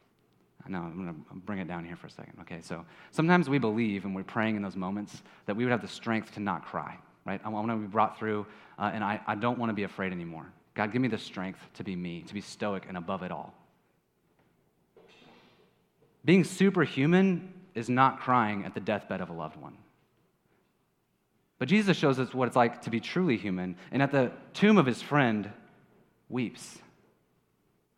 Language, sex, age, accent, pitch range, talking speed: English, male, 30-49, American, 115-180 Hz, 200 wpm